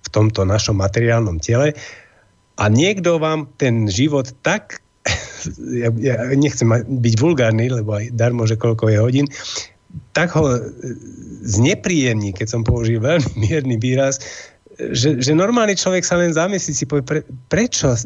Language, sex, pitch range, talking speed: Slovak, male, 120-155 Hz, 140 wpm